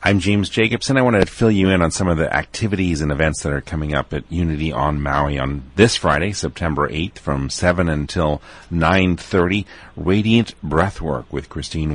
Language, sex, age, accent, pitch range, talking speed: English, male, 40-59, American, 75-90 Hz, 185 wpm